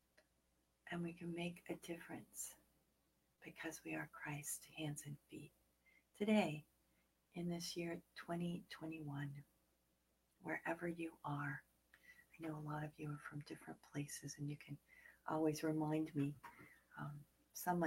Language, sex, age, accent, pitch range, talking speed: English, female, 50-69, American, 135-170 Hz, 130 wpm